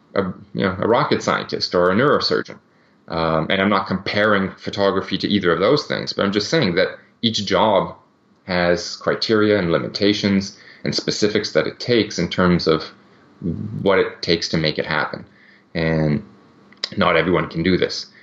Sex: male